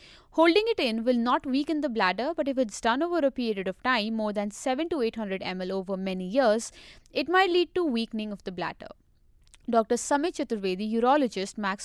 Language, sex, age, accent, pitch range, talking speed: English, female, 20-39, Indian, 210-290 Hz, 200 wpm